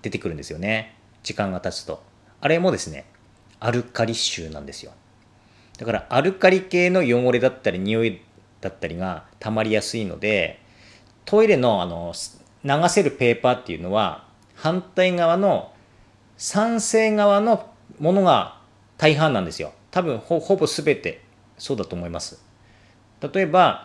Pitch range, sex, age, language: 105-165 Hz, male, 40-59, Japanese